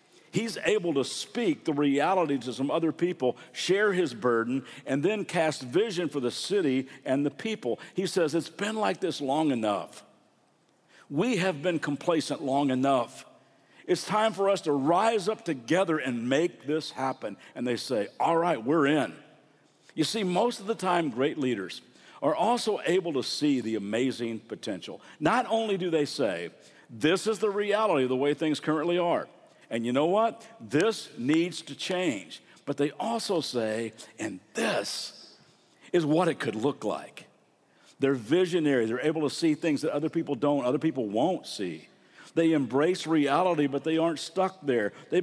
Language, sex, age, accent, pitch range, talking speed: English, male, 50-69, American, 140-190 Hz, 175 wpm